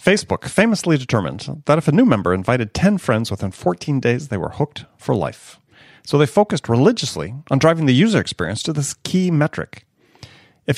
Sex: male